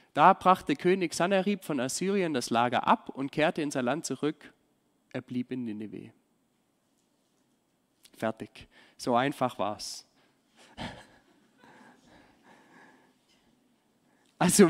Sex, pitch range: male, 135-195 Hz